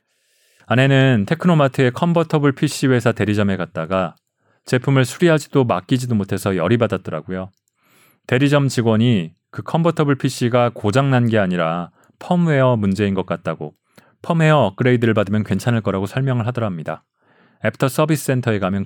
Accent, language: native, Korean